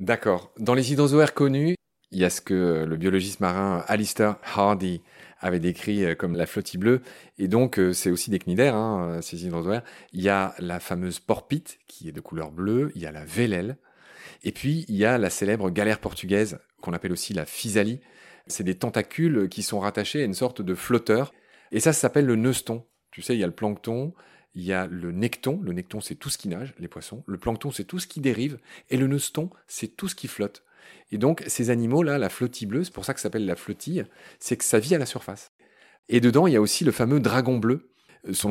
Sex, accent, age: male, French, 30-49